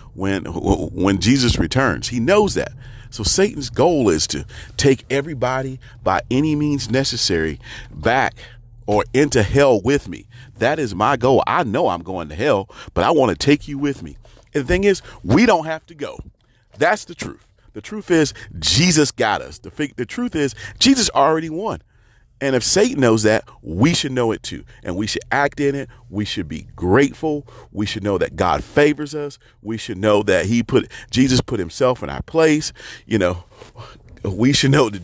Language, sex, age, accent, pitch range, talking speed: English, male, 40-59, American, 100-135 Hz, 190 wpm